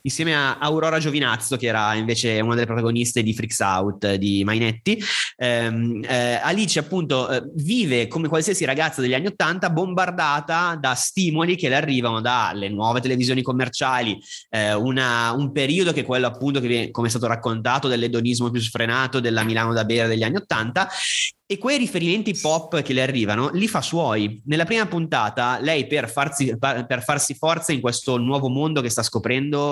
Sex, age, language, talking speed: male, 20-39, Italian, 175 wpm